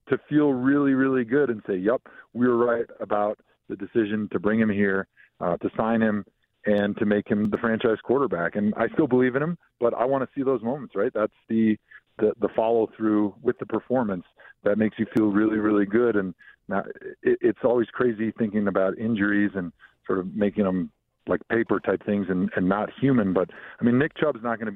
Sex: male